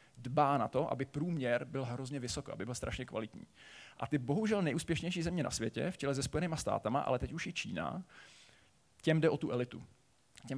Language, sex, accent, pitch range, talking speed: Czech, male, native, 130-155 Hz, 200 wpm